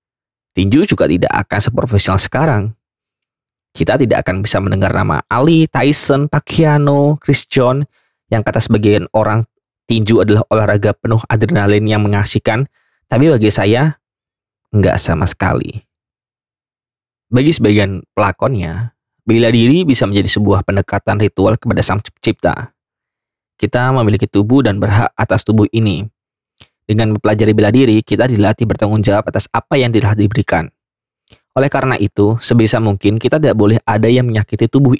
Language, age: Indonesian, 20-39